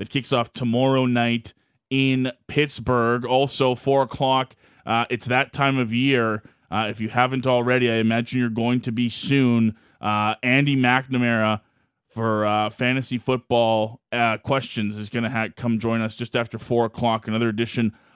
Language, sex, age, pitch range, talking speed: English, male, 20-39, 110-125 Hz, 160 wpm